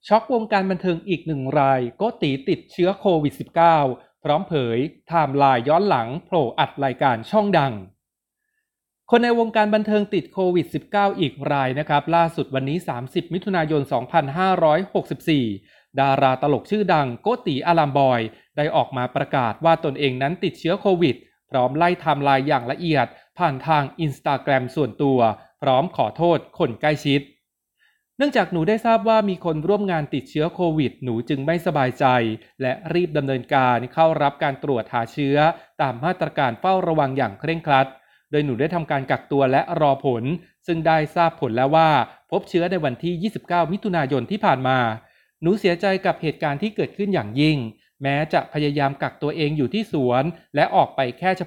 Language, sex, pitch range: Thai, male, 135-175 Hz